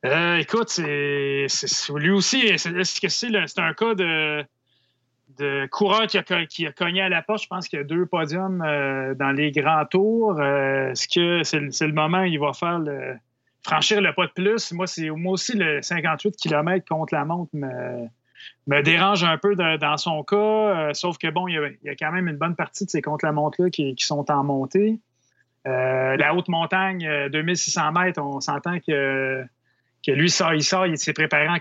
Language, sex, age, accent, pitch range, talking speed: French, male, 30-49, Canadian, 140-185 Hz, 215 wpm